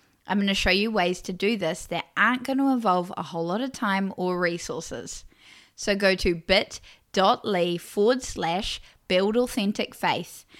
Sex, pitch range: female, 185-225 Hz